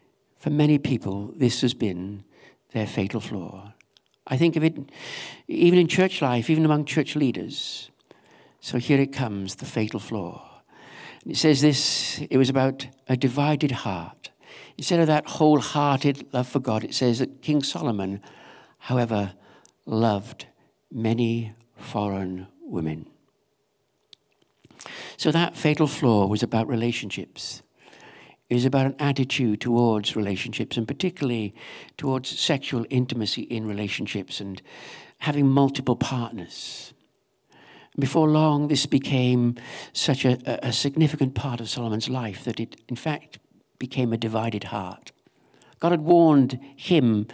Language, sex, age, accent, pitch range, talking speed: English, male, 60-79, British, 110-145 Hz, 130 wpm